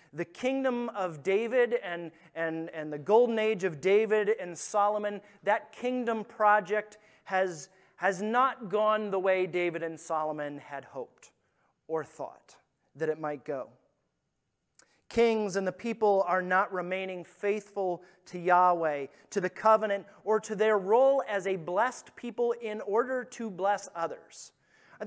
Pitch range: 170-215 Hz